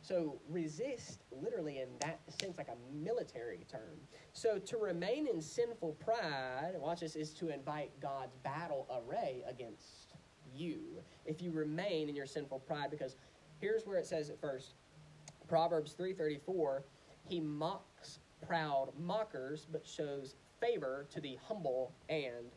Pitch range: 140-185 Hz